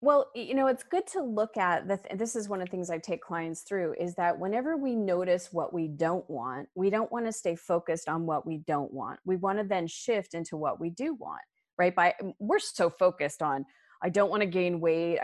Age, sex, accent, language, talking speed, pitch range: 30-49, female, American, English, 245 wpm, 165-215 Hz